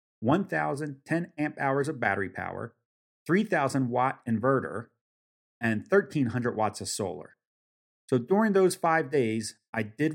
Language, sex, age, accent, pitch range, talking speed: English, male, 40-59, American, 110-140 Hz, 125 wpm